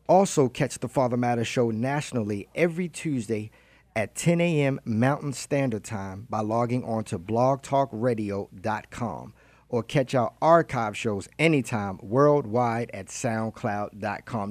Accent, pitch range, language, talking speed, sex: American, 110-135 Hz, English, 120 wpm, male